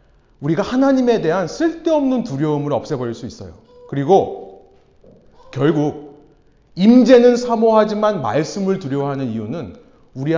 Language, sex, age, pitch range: Korean, male, 30-49, 155-235 Hz